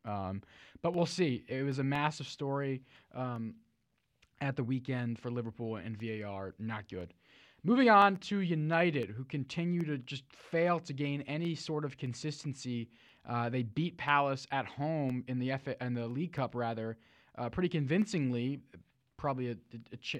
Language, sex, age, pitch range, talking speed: English, male, 20-39, 115-140 Hz, 165 wpm